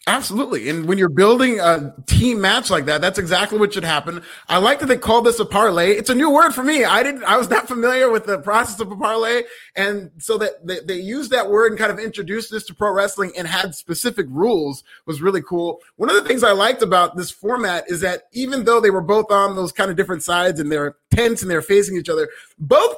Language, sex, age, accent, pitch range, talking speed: English, male, 30-49, American, 185-235 Hz, 250 wpm